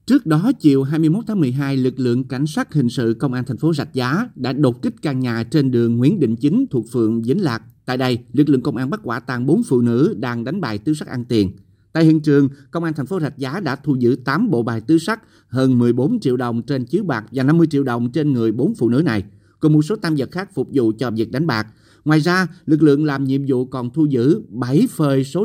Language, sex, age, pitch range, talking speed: Vietnamese, male, 30-49, 120-155 Hz, 260 wpm